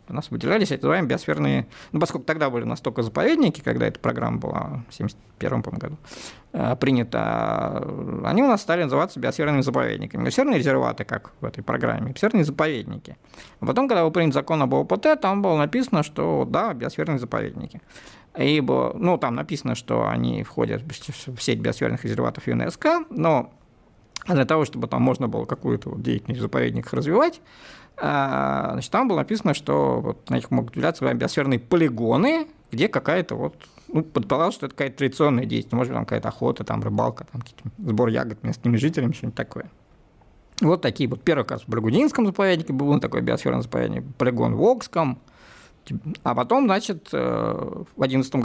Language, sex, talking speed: Russian, male, 160 wpm